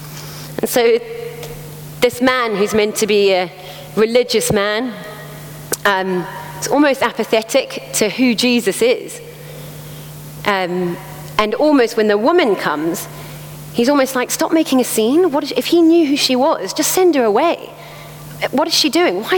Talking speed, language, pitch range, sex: 155 wpm, English, 195-260 Hz, female